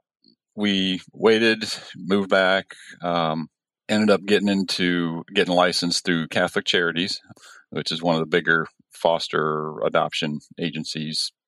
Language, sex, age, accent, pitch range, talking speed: English, male, 40-59, American, 80-90 Hz, 120 wpm